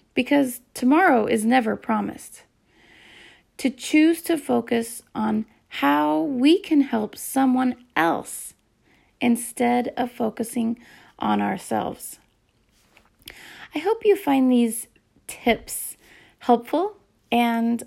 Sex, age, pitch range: female, 30-49, 230-275 Hz